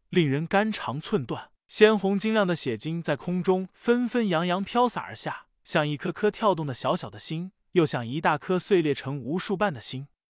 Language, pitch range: Chinese, 150-200 Hz